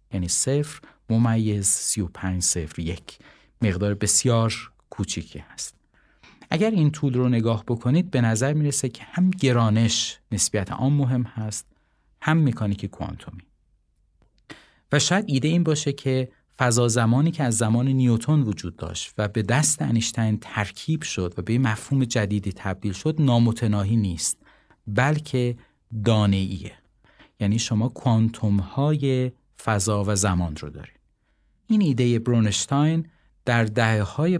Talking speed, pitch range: 135 wpm, 105-130 Hz